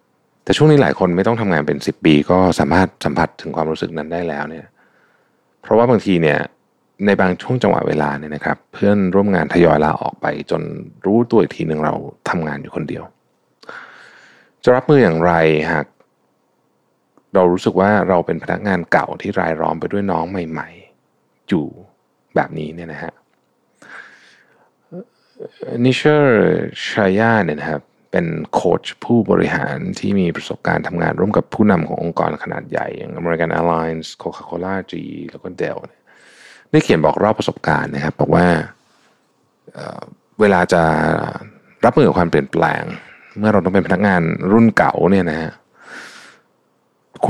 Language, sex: Thai, male